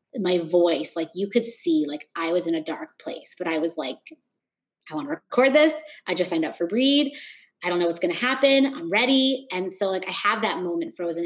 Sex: female